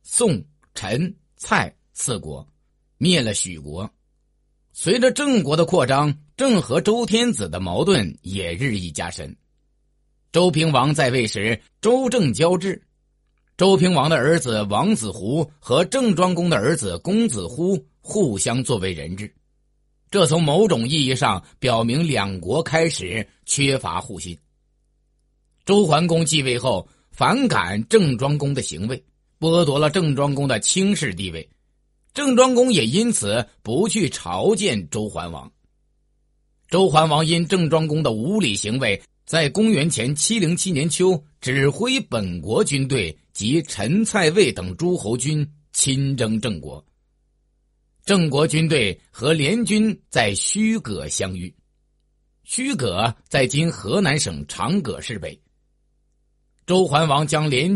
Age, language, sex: 50-69, Chinese, male